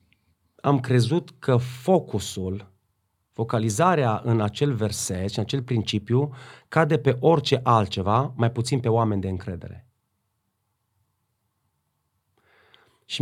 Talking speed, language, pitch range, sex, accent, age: 105 wpm, Romanian, 105-130 Hz, male, native, 30-49